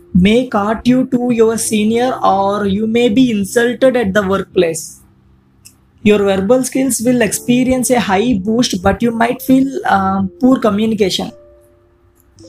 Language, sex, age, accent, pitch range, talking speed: English, female, 20-39, Indian, 195-250 Hz, 140 wpm